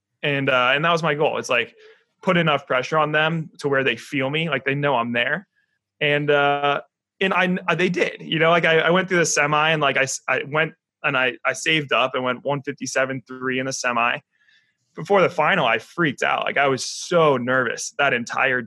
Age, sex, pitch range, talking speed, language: 20-39, male, 135-170 Hz, 220 wpm, English